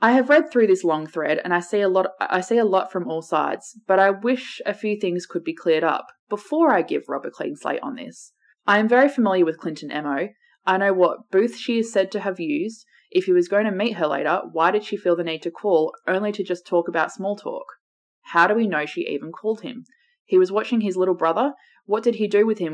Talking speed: 260 wpm